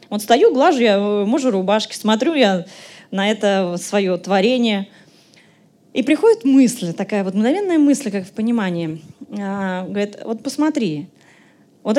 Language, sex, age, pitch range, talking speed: Russian, female, 20-39, 200-280 Hz, 135 wpm